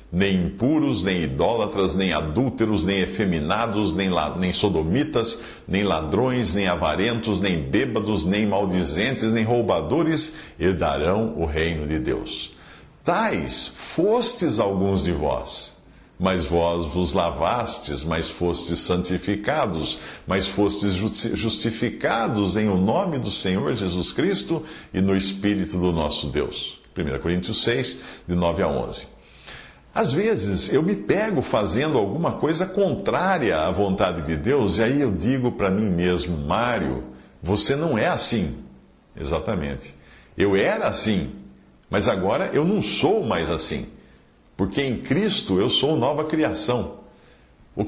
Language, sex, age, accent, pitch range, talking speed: Portuguese, male, 50-69, Brazilian, 85-115 Hz, 135 wpm